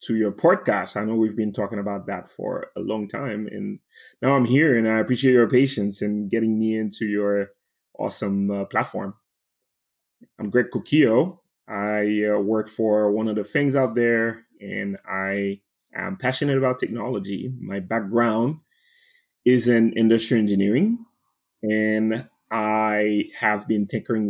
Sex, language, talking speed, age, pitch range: male, English, 150 wpm, 20-39, 100-115 Hz